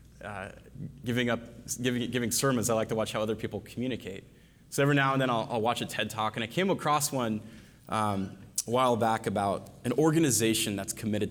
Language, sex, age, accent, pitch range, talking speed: English, male, 20-39, American, 110-135 Hz, 205 wpm